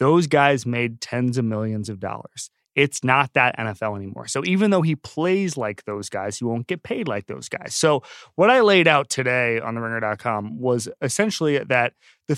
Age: 30-49